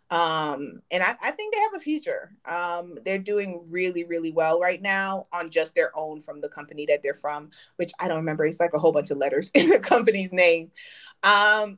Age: 30-49